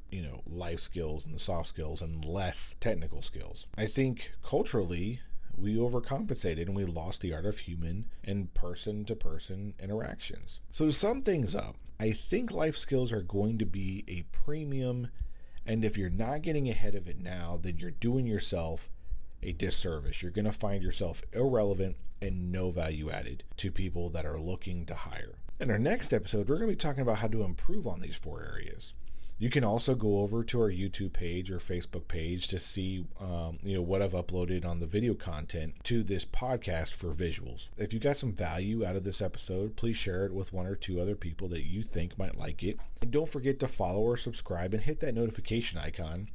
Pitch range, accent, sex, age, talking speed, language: 85-110 Hz, American, male, 40-59, 200 wpm, English